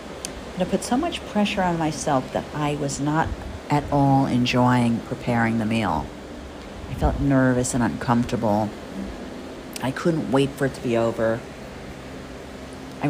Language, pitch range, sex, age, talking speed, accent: English, 110-145 Hz, female, 50-69, 140 wpm, American